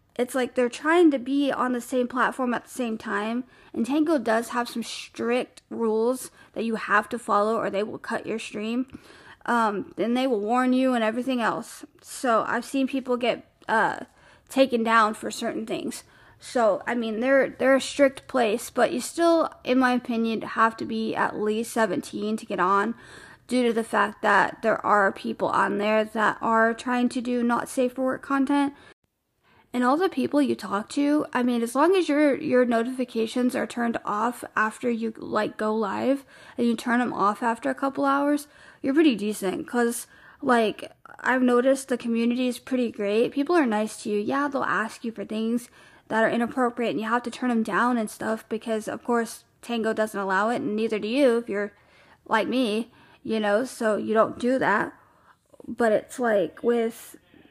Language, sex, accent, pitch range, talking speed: English, female, American, 225-260 Hz, 195 wpm